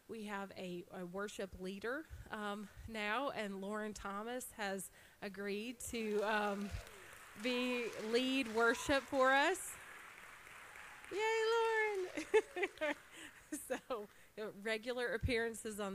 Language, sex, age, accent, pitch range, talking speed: English, female, 30-49, American, 180-220 Hz, 105 wpm